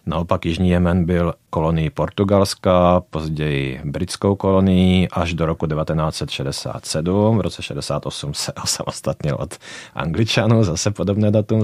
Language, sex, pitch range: Czech, male, 80-105 Hz